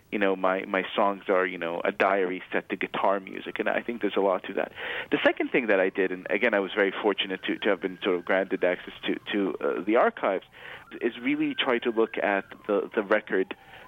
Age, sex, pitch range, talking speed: 30-49, male, 100-125 Hz, 240 wpm